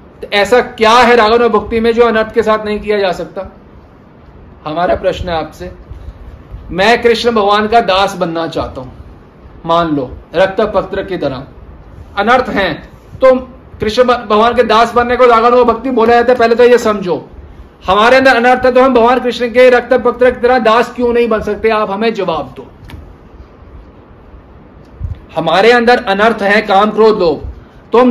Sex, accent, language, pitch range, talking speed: male, native, Hindi, 205-260 Hz, 170 wpm